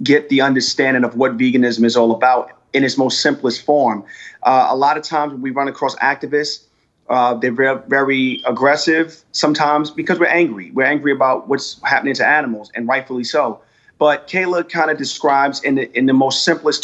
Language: English